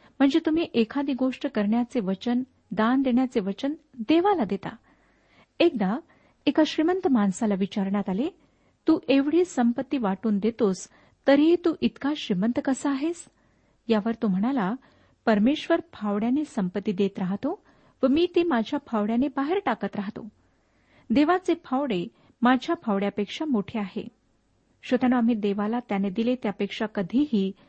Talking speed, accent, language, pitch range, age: 125 wpm, native, Marathi, 210-280 Hz, 50-69